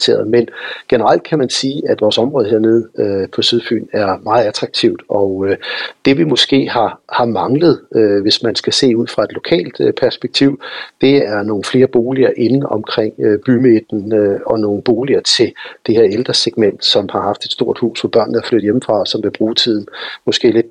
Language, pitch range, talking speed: Danish, 115-155 Hz, 195 wpm